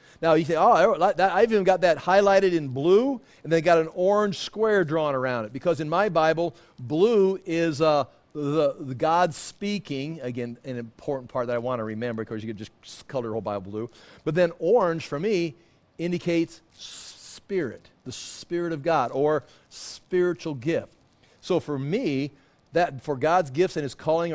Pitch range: 135-175 Hz